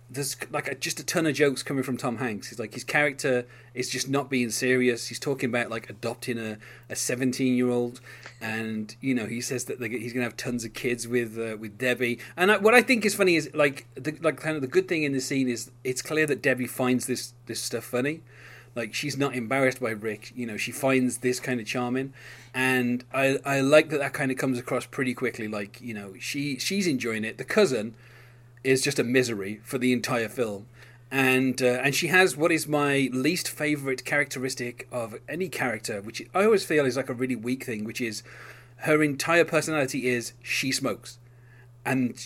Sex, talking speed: male, 215 wpm